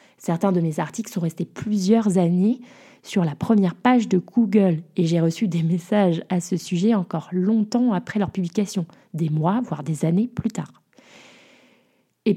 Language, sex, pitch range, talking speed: French, female, 175-220 Hz, 170 wpm